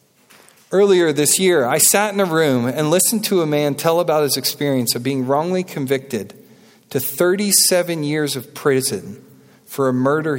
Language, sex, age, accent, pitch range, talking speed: English, male, 40-59, American, 135-195 Hz, 170 wpm